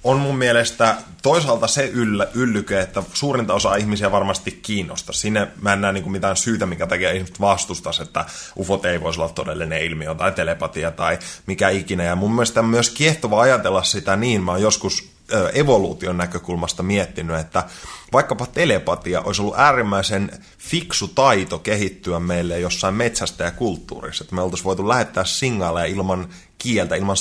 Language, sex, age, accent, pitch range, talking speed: Finnish, male, 20-39, native, 90-115 Hz, 160 wpm